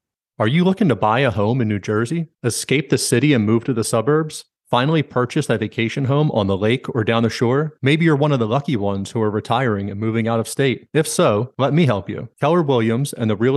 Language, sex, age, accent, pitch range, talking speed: English, male, 30-49, American, 115-145 Hz, 250 wpm